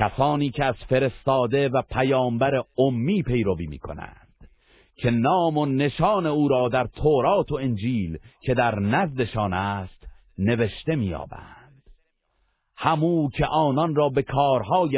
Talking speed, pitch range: 125 wpm, 105-145 Hz